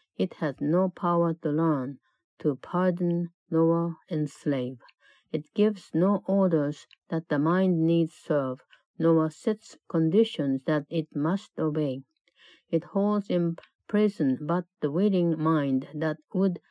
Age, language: 50-69, Japanese